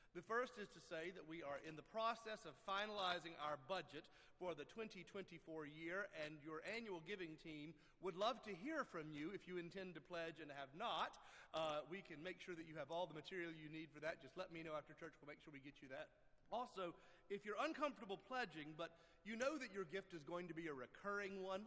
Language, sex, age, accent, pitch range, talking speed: English, male, 40-59, American, 140-185 Hz, 235 wpm